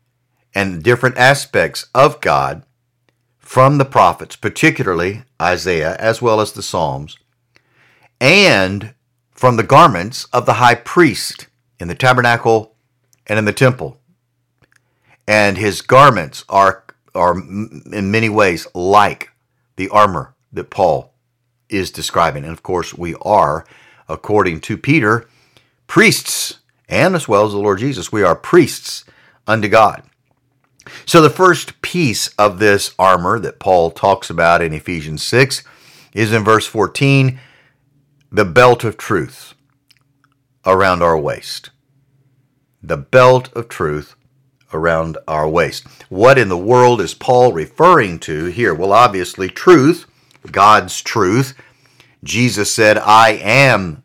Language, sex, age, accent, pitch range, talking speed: English, male, 50-69, American, 105-130 Hz, 130 wpm